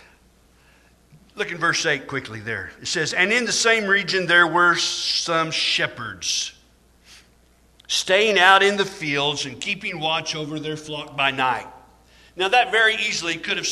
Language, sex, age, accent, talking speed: English, male, 50-69, American, 160 wpm